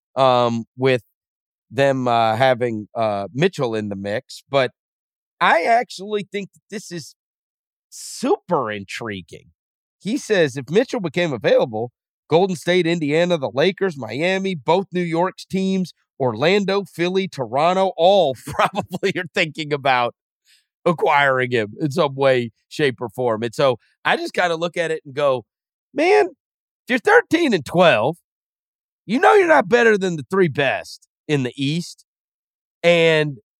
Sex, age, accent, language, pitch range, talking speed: male, 40-59, American, English, 125-185 Hz, 145 wpm